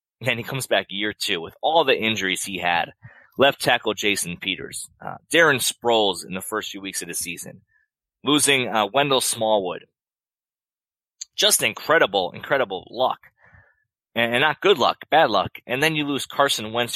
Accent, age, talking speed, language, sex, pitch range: American, 20-39, 165 wpm, English, male, 105-135 Hz